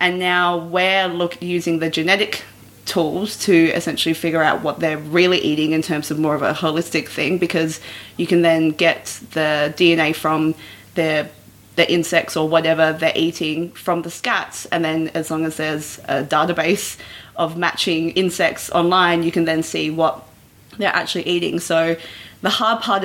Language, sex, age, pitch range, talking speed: English, female, 20-39, 160-175 Hz, 165 wpm